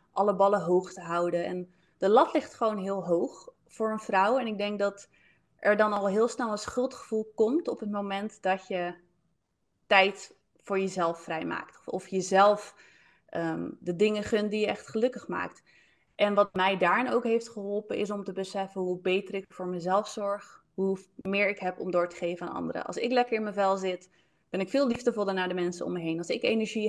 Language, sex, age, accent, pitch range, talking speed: Dutch, female, 20-39, Dutch, 185-225 Hz, 210 wpm